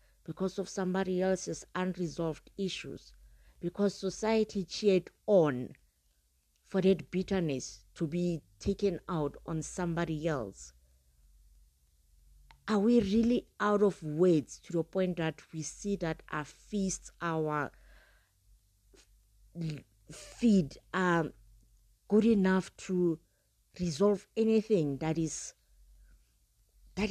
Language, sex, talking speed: English, female, 95 wpm